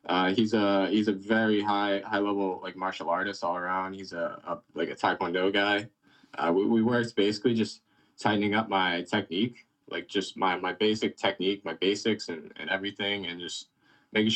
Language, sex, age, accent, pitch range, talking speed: English, male, 20-39, American, 95-115 Hz, 185 wpm